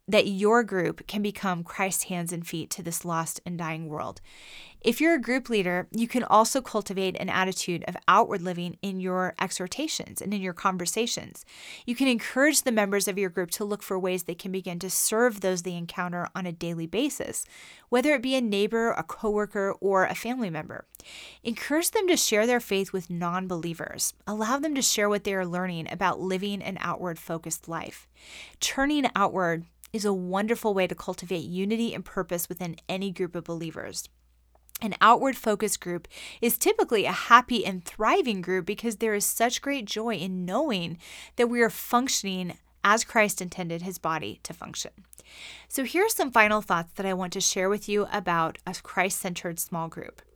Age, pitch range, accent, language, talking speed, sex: 30-49, 180-230 Hz, American, English, 185 wpm, female